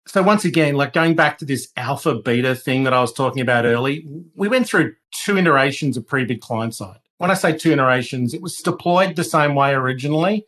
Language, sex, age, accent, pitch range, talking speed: English, male, 40-59, Australian, 125-155 Hz, 225 wpm